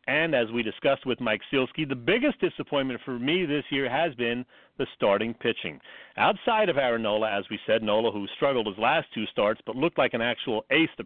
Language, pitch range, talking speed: English, 120-160 Hz, 215 wpm